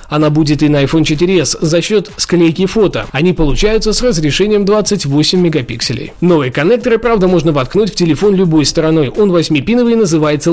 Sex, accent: male, native